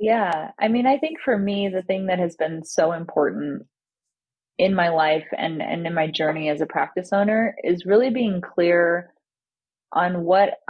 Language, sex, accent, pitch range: English, female, American, 155-195 Hz